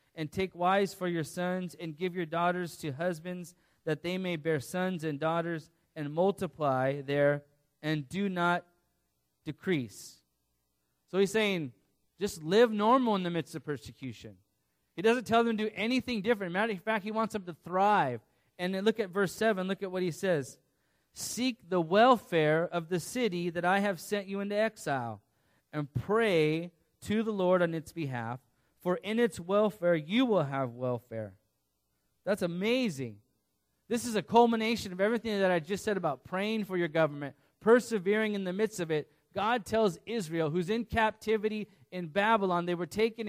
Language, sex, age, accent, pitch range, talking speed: English, male, 30-49, American, 150-210 Hz, 175 wpm